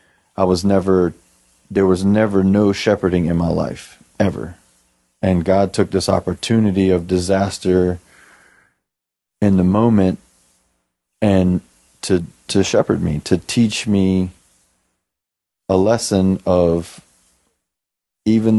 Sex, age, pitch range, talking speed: male, 30-49, 85-105 Hz, 110 wpm